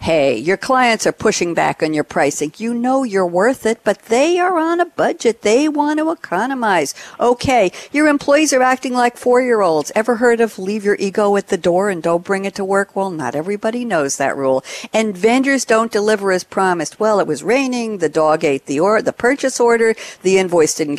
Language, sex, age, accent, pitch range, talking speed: English, female, 60-79, American, 175-245 Hz, 205 wpm